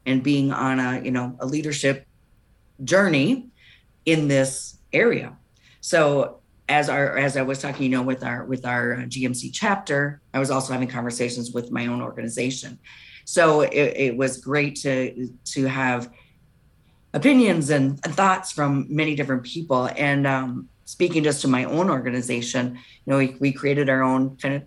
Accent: American